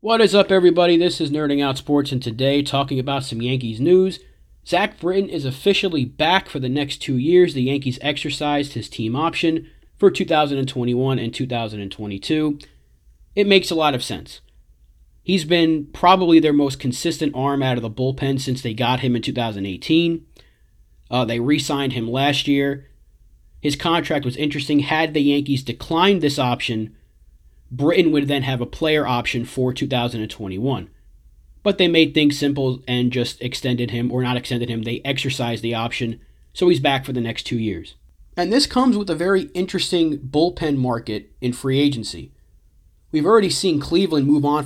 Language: English